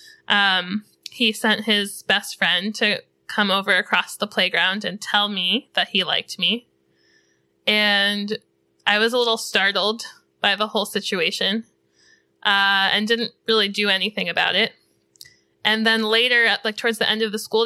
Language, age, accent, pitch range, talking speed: English, 10-29, American, 190-225 Hz, 165 wpm